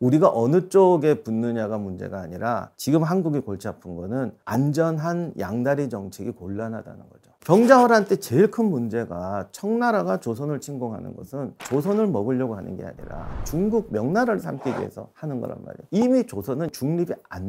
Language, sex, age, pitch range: Korean, male, 40-59, 110-185 Hz